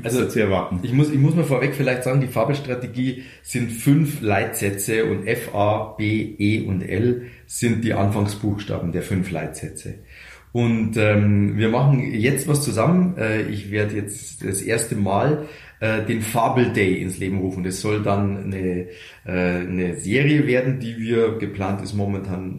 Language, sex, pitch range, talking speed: German, male, 100-140 Hz, 155 wpm